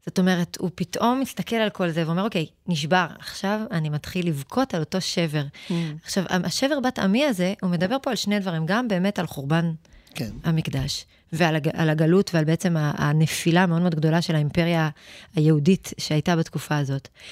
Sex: female